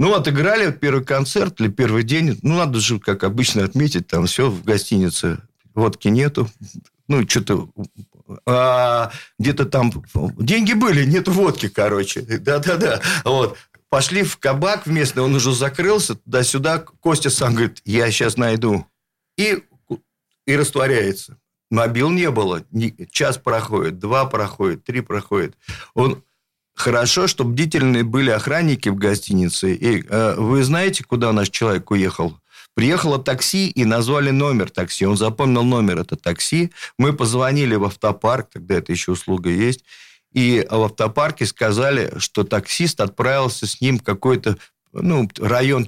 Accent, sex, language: native, male, Russian